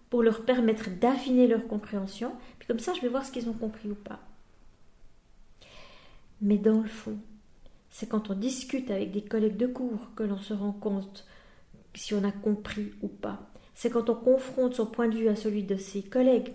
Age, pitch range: 40-59, 205-250 Hz